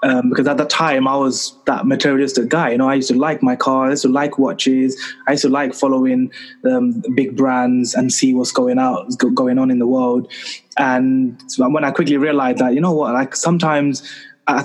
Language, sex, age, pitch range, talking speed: English, male, 20-39, 130-165 Hz, 225 wpm